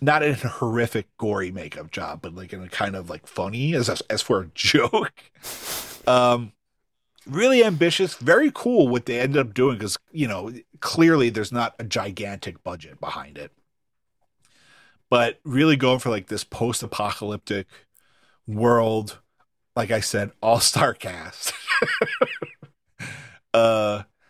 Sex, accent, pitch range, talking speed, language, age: male, American, 105-140 Hz, 135 wpm, English, 40-59